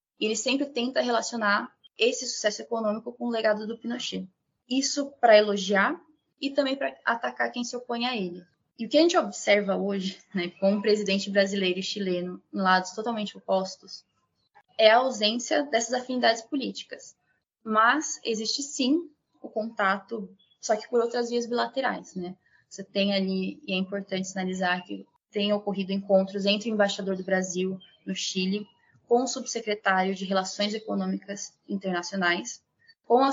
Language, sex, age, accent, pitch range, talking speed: Portuguese, female, 20-39, Brazilian, 190-240 Hz, 155 wpm